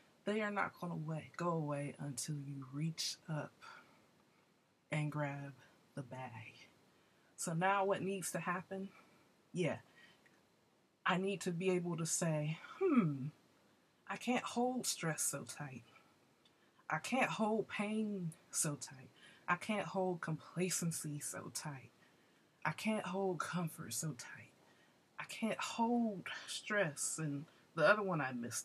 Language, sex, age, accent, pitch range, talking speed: English, female, 20-39, American, 150-215 Hz, 135 wpm